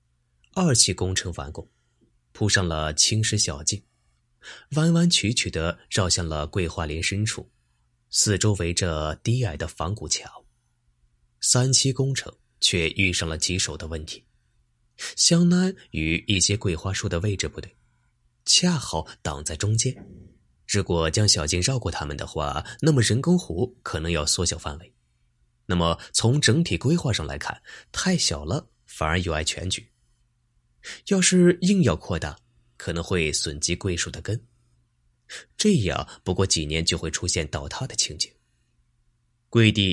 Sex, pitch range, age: male, 75-115 Hz, 20-39